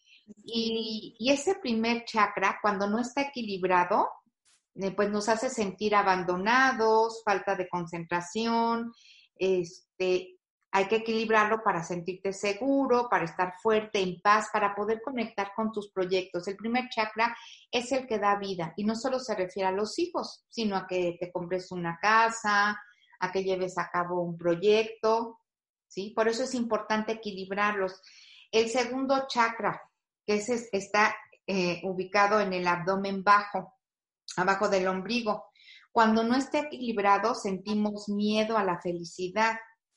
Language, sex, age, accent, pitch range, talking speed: Spanish, female, 40-59, Mexican, 195-230 Hz, 140 wpm